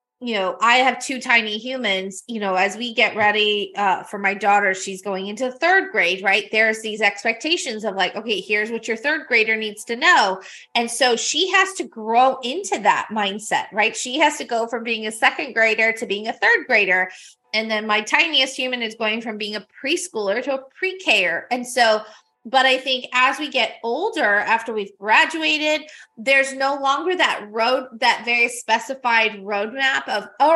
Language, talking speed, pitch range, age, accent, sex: English, 195 wpm, 205-255 Hz, 20-39, American, female